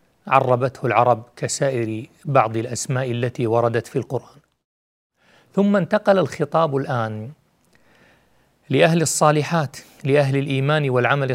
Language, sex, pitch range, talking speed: Arabic, male, 125-150 Hz, 95 wpm